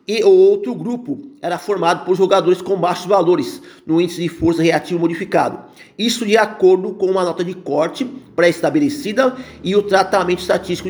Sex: male